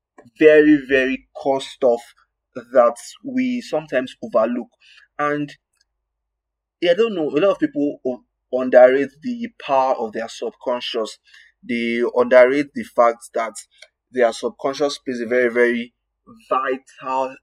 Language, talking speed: English, 115 wpm